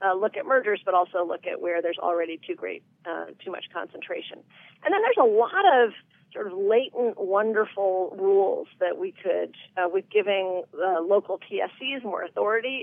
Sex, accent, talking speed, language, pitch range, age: female, American, 185 wpm, English, 175-230 Hz, 40-59